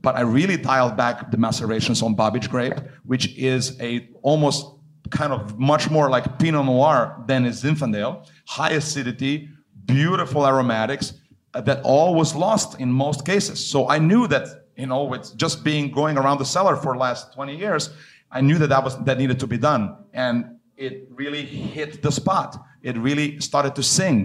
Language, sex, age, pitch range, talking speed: English, male, 40-59, 125-150 Hz, 185 wpm